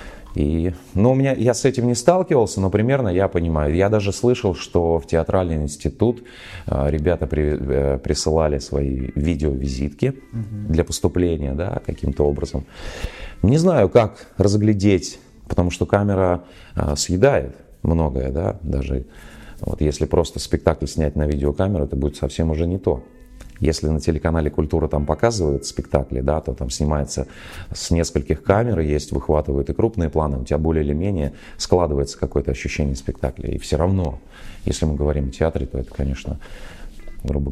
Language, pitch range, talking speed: Russian, 75-95 Hz, 145 wpm